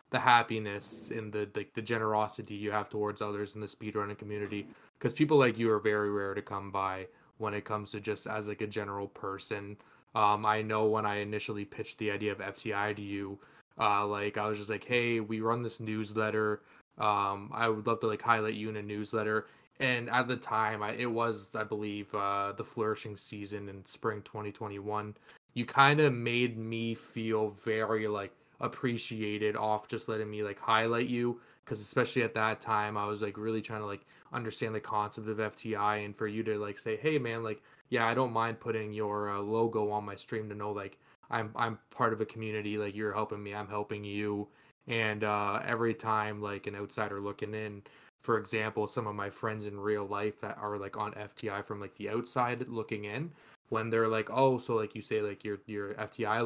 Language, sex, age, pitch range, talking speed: English, male, 20-39, 105-115 Hz, 210 wpm